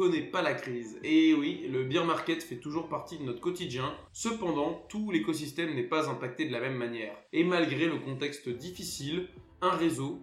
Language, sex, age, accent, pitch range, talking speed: French, male, 20-39, French, 135-185 Hz, 190 wpm